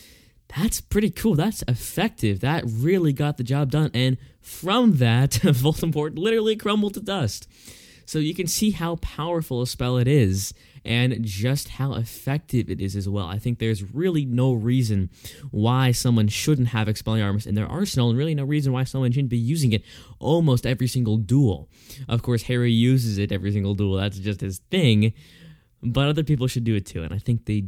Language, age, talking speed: English, 10-29, 195 wpm